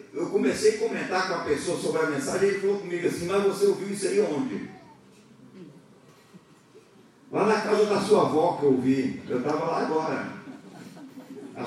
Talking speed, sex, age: 180 wpm, male, 40-59